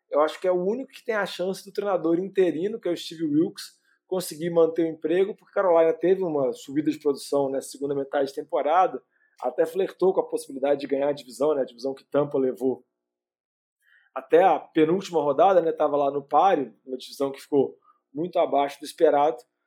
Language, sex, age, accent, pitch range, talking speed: Portuguese, male, 20-39, Brazilian, 140-170 Hz, 200 wpm